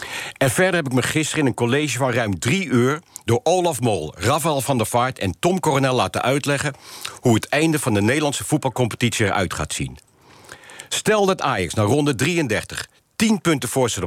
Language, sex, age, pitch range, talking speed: Dutch, male, 50-69, 105-140 Hz, 190 wpm